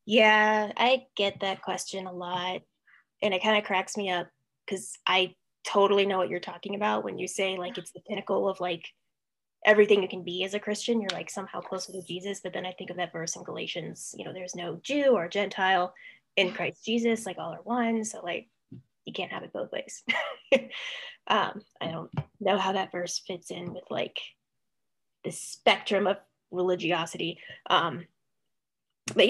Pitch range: 185-230 Hz